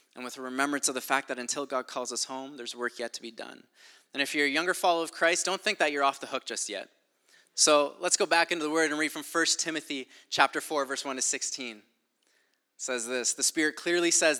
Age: 20-39